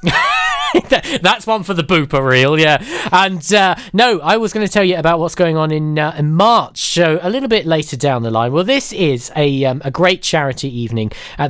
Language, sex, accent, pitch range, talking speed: English, male, British, 135-205 Hz, 220 wpm